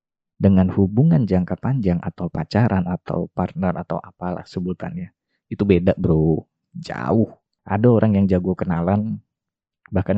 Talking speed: 125 wpm